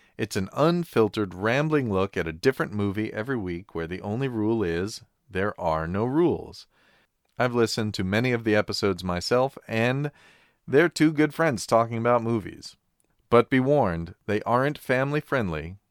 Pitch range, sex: 95-135 Hz, male